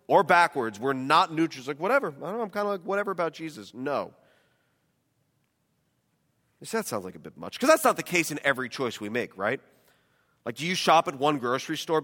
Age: 30-49